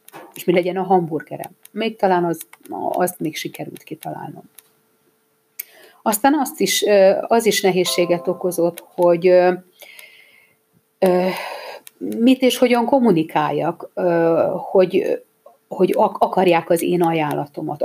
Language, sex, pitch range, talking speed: Hungarian, female, 170-210 Hz, 90 wpm